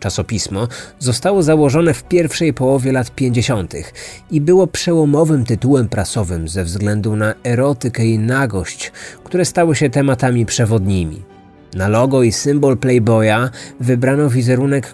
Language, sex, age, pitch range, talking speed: Polish, male, 30-49, 110-155 Hz, 125 wpm